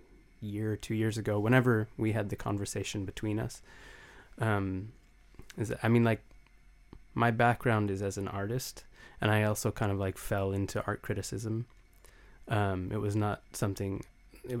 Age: 20-39